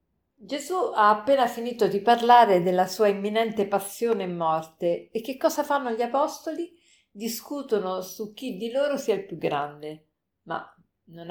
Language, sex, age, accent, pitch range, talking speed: Italian, female, 50-69, native, 175-230 Hz, 155 wpm